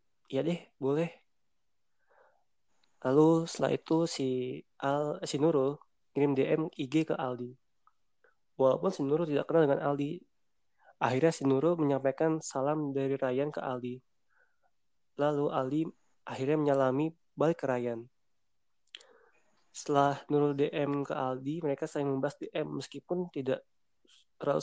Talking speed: 120 wpm